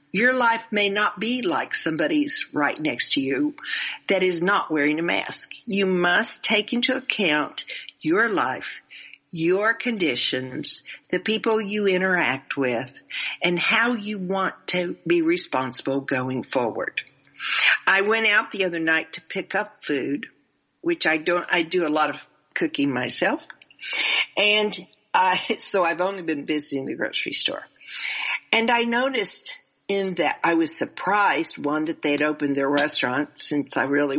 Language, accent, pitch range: English, American, 155-225 Hz